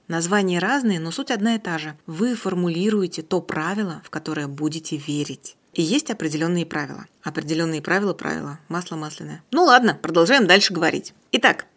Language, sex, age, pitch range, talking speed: Russian, female, 30-49, 160-210 Hz, 160 wpm